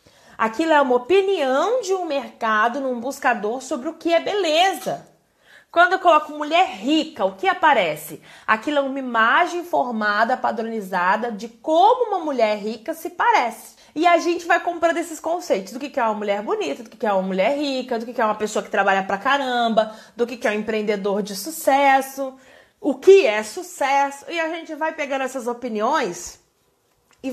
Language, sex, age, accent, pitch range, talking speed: Portuguese, female, 20-39, Brazilian, 230-320 Hz, 180 wpm